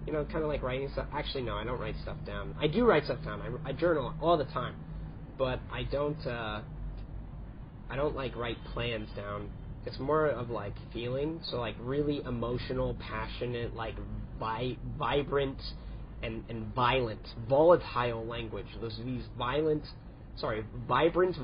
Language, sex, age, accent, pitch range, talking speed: English, male, 30-49, American, 110-140 Hz, 160 wpm